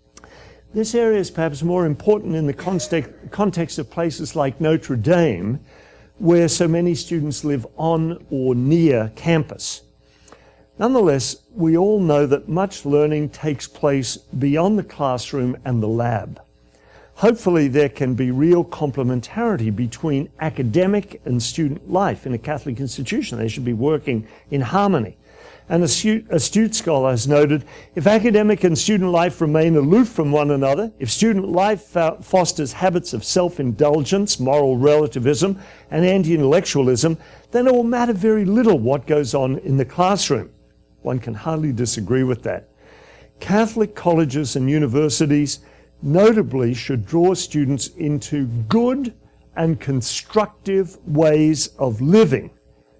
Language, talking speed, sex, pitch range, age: English, 135 wpm, male, 130-180 Hz, 50-69